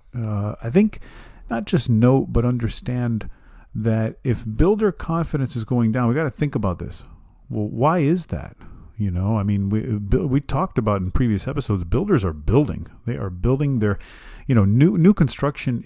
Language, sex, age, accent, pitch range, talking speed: English, male, 40-59, American, 100-125 Hz, 180 wpm